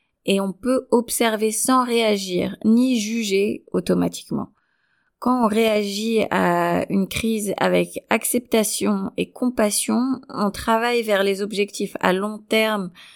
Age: 20-39